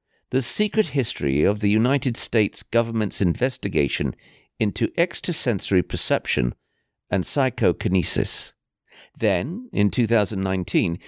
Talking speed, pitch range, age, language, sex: 90 wpm, 95-140 Hz, 50-69, English, male